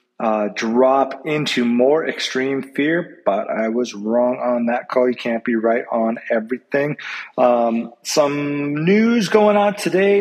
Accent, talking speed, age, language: American, 145 wpm, 30-49, English